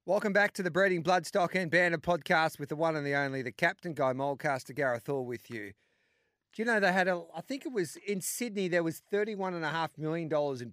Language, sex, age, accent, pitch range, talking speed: English, male, 40-59, Australian, 135-175 Hz, 225 wpm